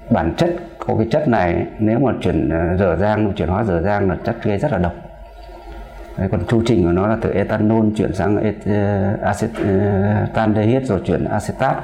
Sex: male